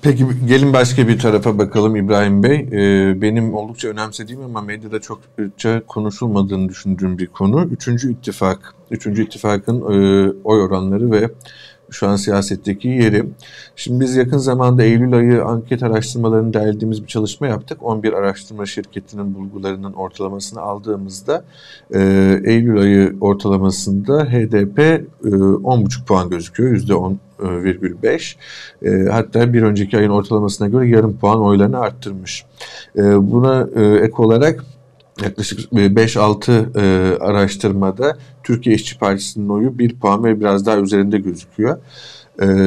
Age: 50-69